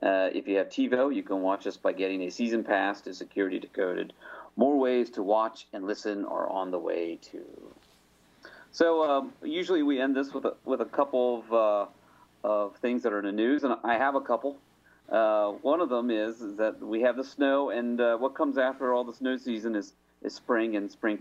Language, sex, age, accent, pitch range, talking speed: English, male, 40-59, American, 110-160 Hz, 220 wpm